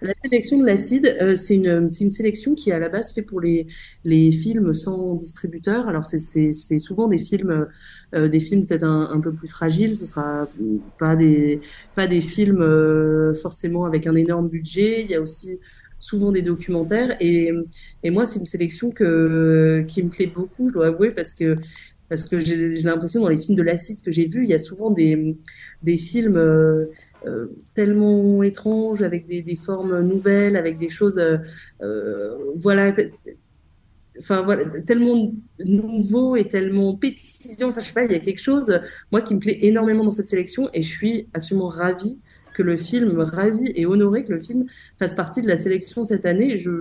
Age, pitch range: 30-49, 165-210 Hz